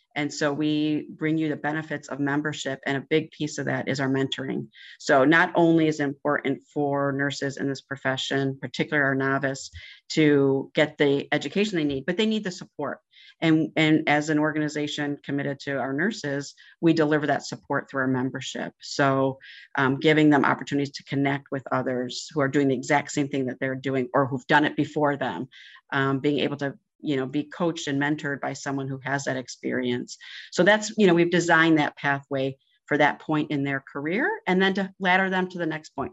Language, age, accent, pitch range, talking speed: English, 40-59, American, 135-160 Hz, 205 wpm